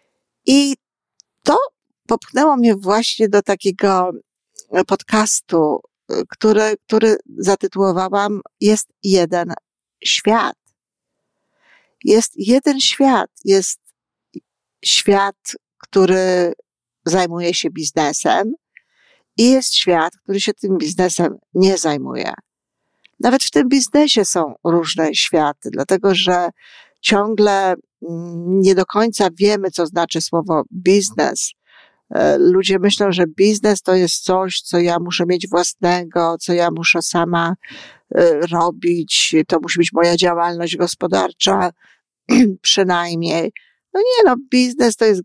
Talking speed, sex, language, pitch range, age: 105 wpm, female, Polish, 170-210 Hz, 50-69